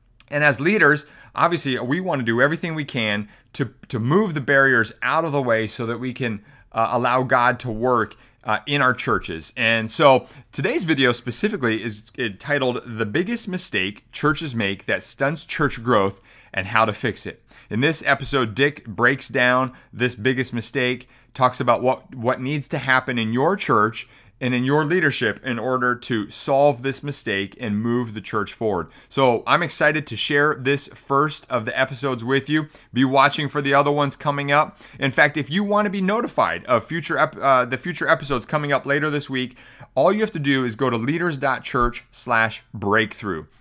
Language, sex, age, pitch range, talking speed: English, male, 30-49, 115-145 Hz, 185 wpm